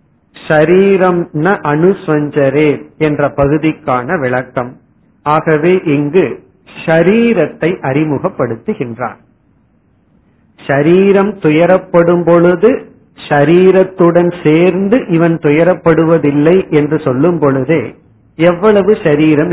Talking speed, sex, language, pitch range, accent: 60 wpm, male, Tamil, 140-180 Hz, native